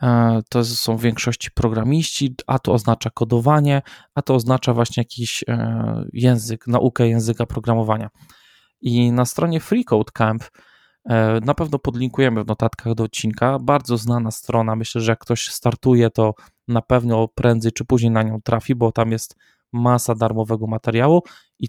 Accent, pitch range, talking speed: native, 115-140 Hz, 145 wpm